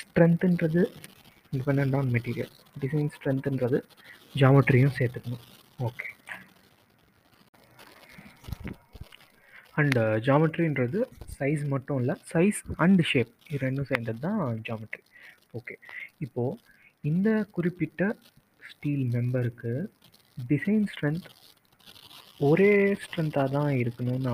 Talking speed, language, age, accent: 85 wpm, Tamil, 30-49, native